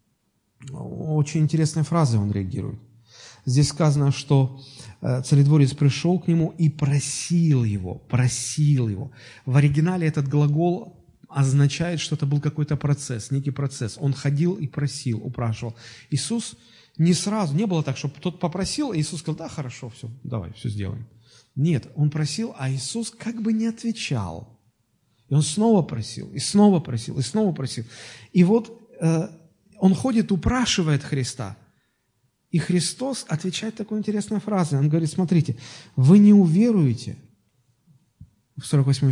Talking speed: 140 wpm